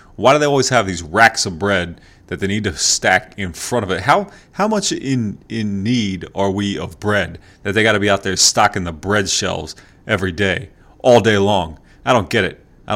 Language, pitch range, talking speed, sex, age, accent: English, 90-105 Hz, 225 wpm, male, 30-49, American